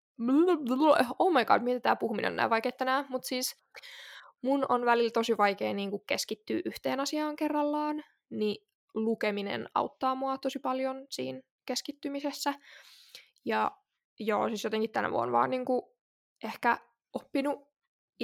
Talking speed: 120 wpm